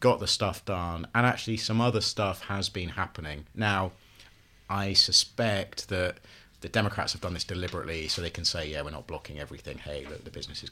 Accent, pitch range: British, 85-110 Hz